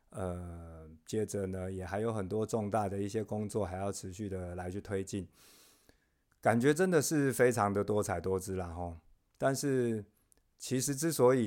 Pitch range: 95-125 Hz